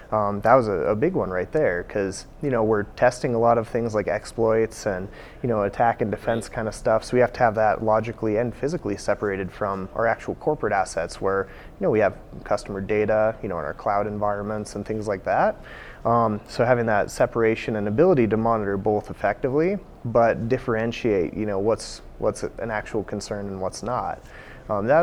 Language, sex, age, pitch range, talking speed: English, male, 30-49, 100-115 Hz, 205 wpm